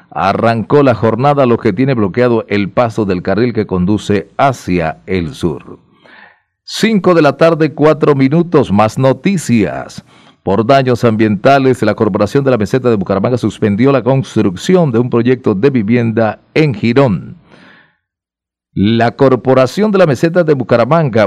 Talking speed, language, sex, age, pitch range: 145 wpm, Spanish, male, 40-59, 105-140 Hz